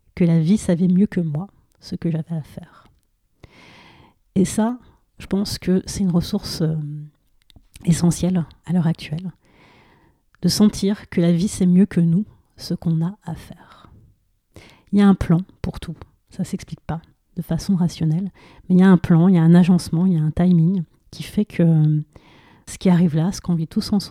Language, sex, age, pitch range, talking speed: French, female, 30-49, 160-190 Hz, 205 wpm